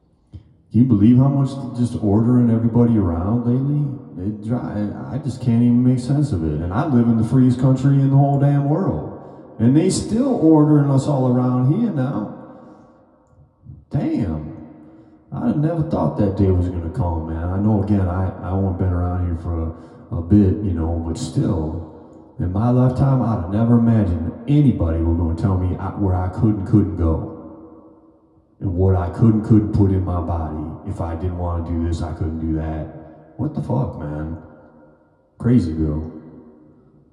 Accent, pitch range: American, 80-120 Hz